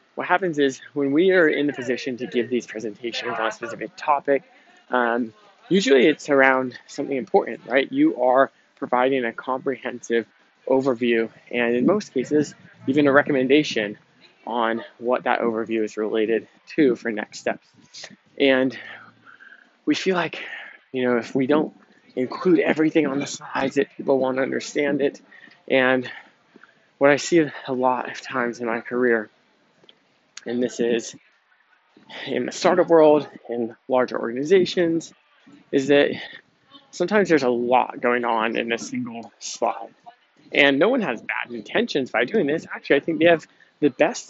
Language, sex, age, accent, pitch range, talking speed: English, male, 20-39, American, 120-150 Hz, 155 wpm